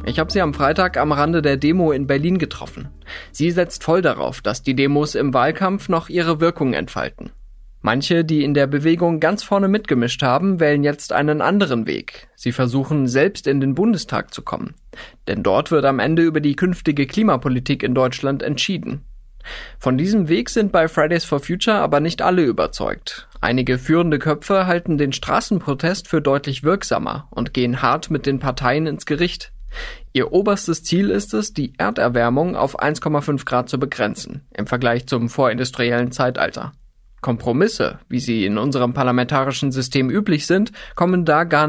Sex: male